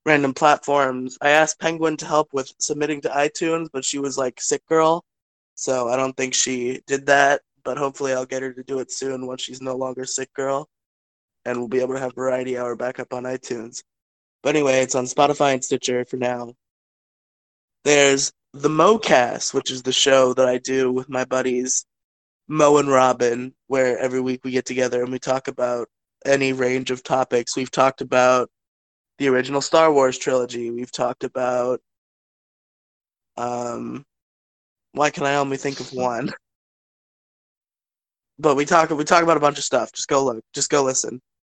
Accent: American